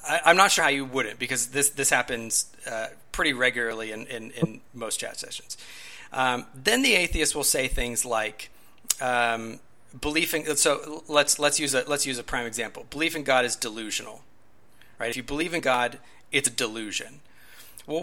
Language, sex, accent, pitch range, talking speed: English, male, American, 125-160 Hz, 180 wpm